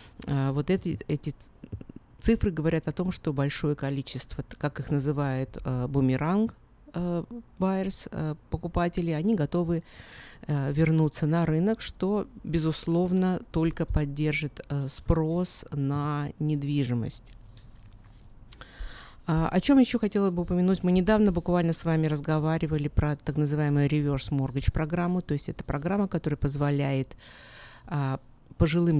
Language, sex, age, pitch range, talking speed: Russian, female, 50-69, 140-175 Hz, 110 wpm